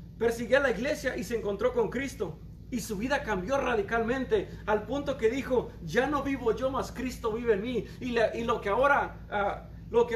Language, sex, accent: Spanish, male, Mexican